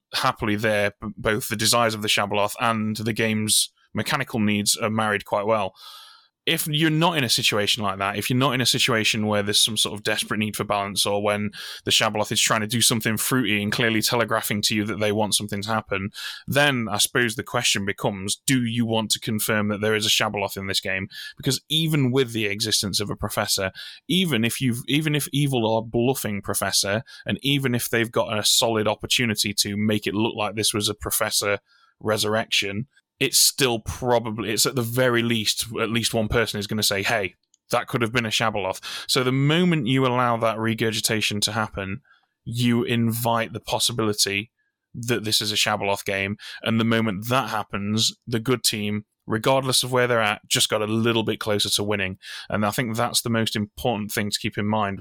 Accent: British